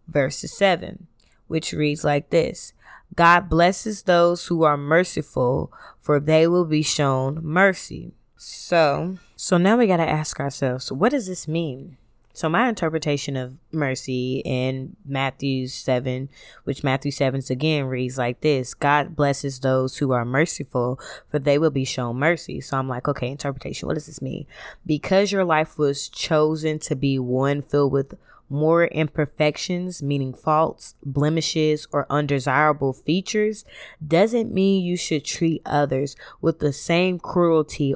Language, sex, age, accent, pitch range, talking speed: English, female, 20-39, American, 140-175 Hz, 145 wpm